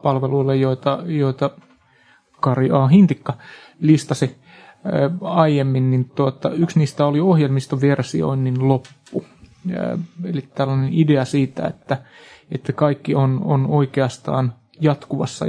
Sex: male